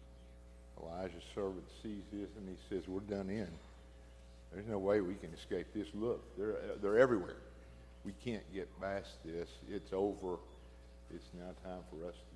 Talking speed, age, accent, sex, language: 165 wpm, 50-69, American, male, English